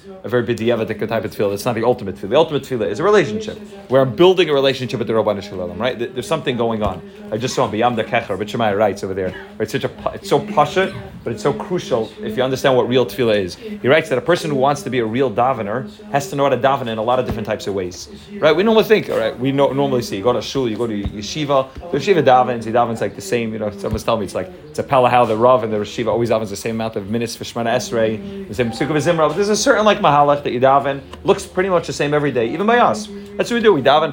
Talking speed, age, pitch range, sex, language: 285 wpm, 30-49, 115-175 Hz, male, English